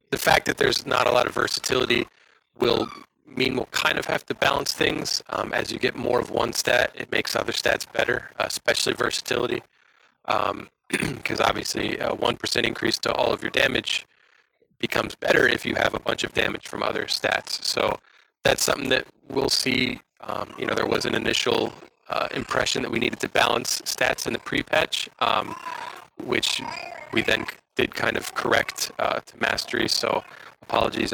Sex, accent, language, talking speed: male, American, English, 180 wpm